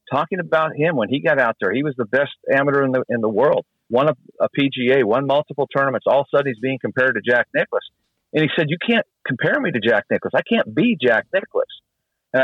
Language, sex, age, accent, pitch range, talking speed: English, male, 50-69, American, 125-160 Hz, 245 wpm